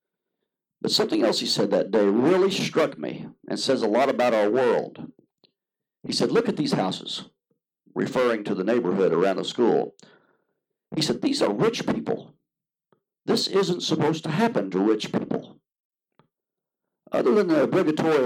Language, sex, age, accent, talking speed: English, male, 60-79, American, 160 wpm